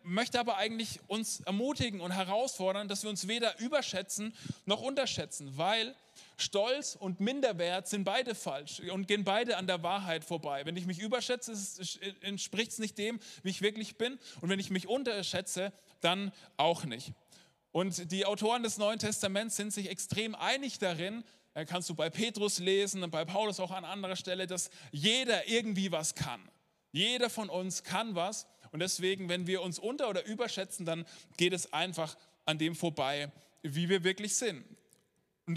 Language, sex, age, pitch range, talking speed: German, male, 20-39, 180-220 Hz, 170 wpm